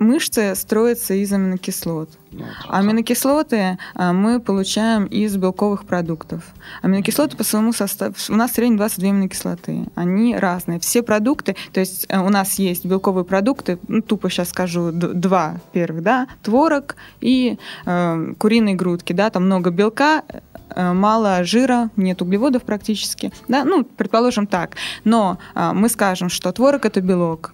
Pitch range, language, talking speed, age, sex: 185-225 Hz, Russian, 130 wpm, 20-39, female